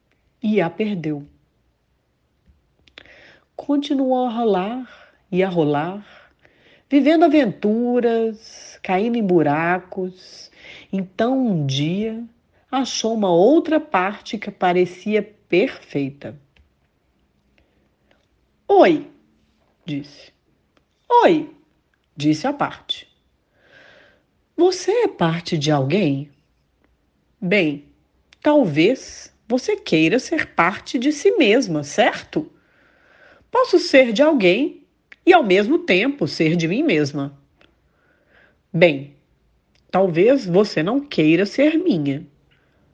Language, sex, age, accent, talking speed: Portuguese, female, 40-59, Brazilian, 90 wpm